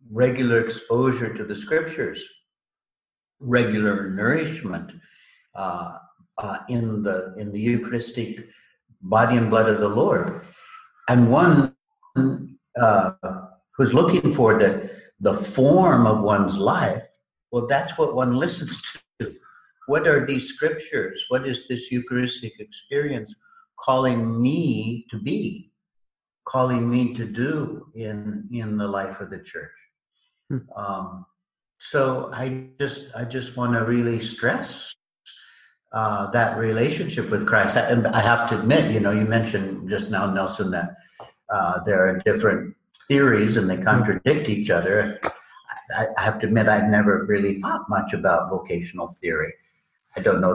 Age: 60-79